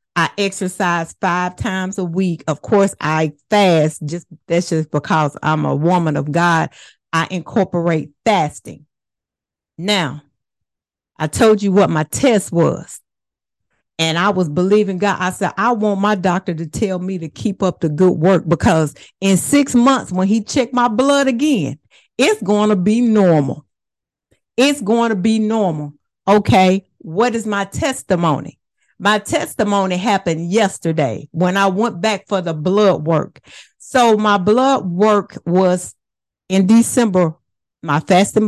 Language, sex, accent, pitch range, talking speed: English, female, American, 160-210 Hz, 150 wpm